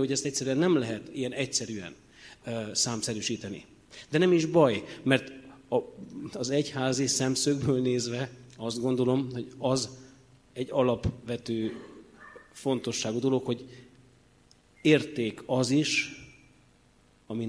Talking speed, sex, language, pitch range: 110 wpm, male, Hungarian, 110-130 Hz